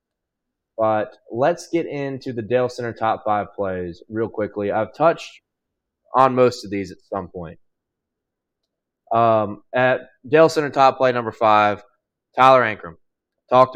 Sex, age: male, 20-39